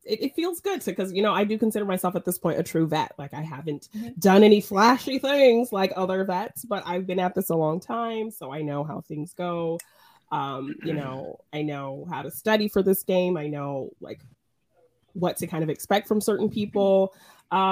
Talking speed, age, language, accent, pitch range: 215 wpm, 20-39, English, American, 150-200 Hz